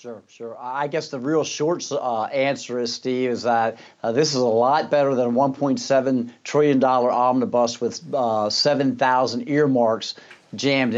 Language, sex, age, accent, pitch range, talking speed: English, male, 50-69, American, 120-140 Hz, 160 wpm